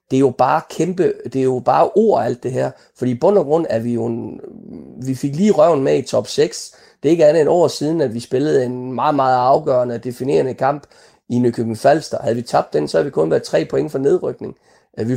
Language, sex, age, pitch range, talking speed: Danish, male, 30-49, 125-185 Hz, 250 wpm